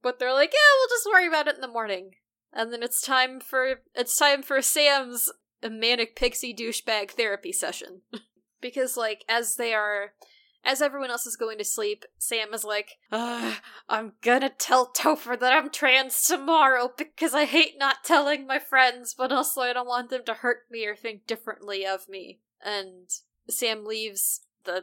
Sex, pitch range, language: female, 205-255 Hz, English